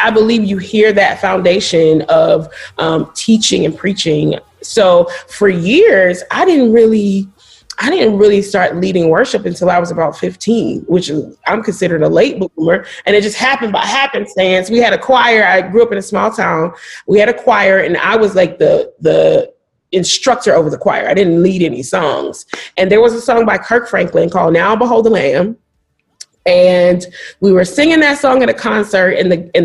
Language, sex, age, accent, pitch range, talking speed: English, female, 30-49, American, 185-265 Hz, 190 wpm